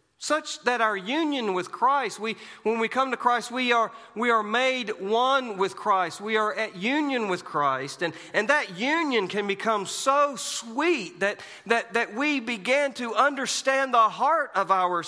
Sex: male